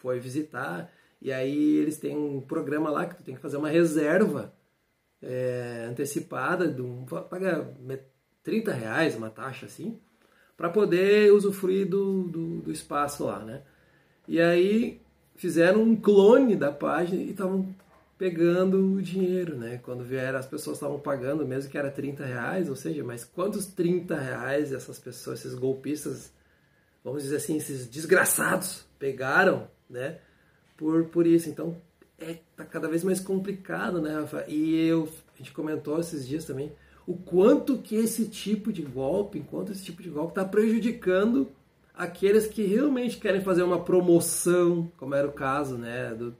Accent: Brazilian